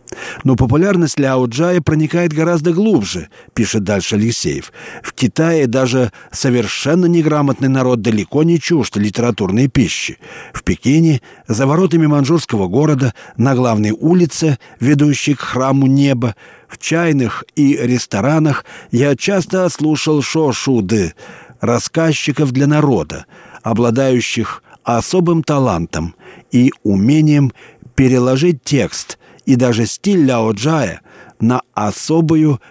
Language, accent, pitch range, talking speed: Russian, native, 120-155 Hz, 105 wpm